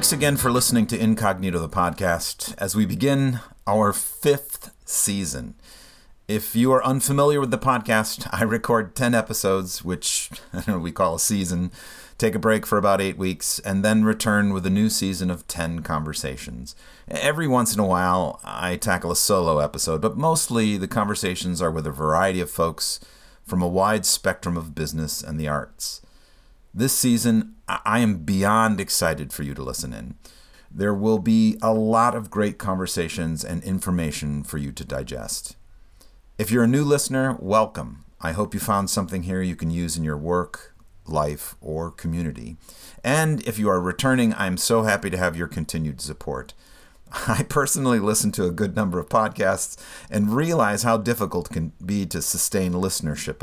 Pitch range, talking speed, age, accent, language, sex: 85-110 Hz, 175 wpm, 40-59, American, English, male